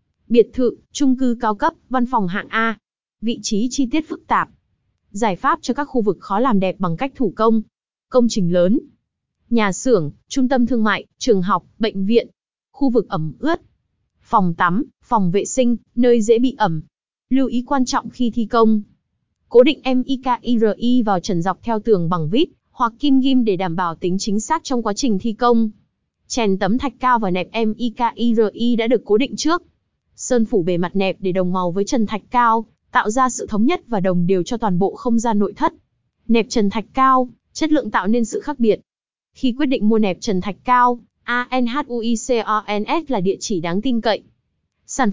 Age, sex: 20-39, female